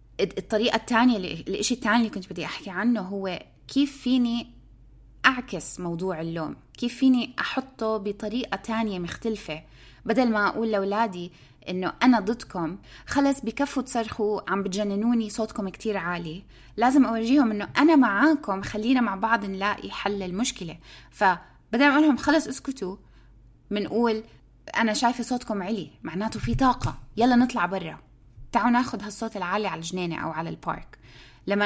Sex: female